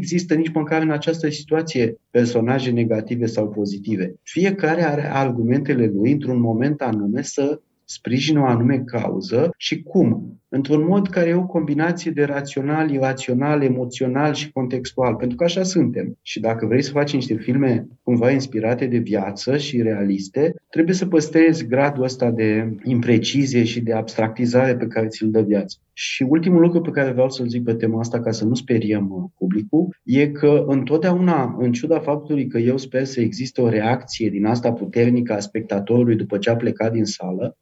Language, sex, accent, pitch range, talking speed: Romanian, male, native, 115-145 Hz, 170 wpm